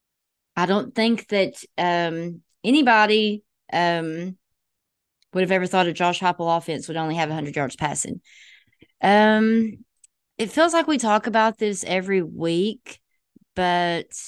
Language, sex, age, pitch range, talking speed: English, female, 20-39, 160-215 Hz, 135 wpm